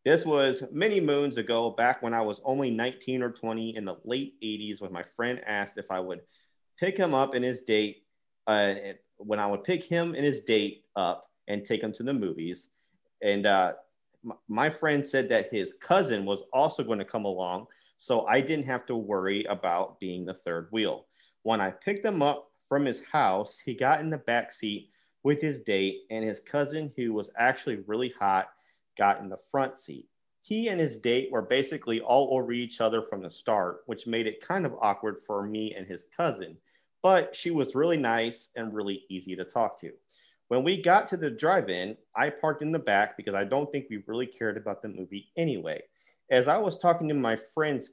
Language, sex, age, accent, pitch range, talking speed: English, male, 30-49, American, 105-145 Hz, 205 wpm